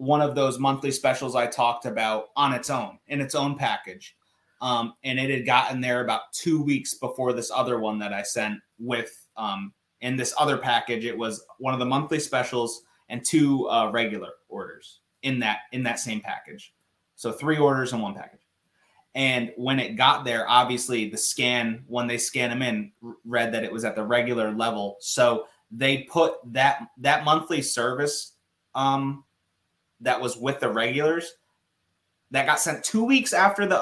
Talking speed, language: 180 wpm, English